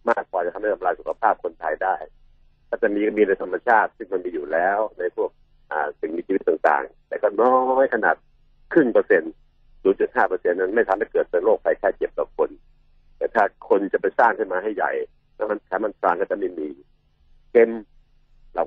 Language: Thai